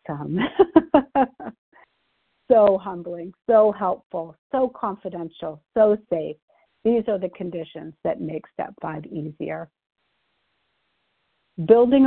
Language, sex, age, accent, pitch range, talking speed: English, female, 50-69, American, 180-225 Hz, 90 wpm